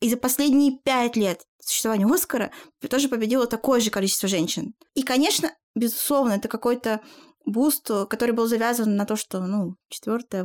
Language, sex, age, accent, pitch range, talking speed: Russian, female, 20-39, native, 225-280 Hz, 155 wpm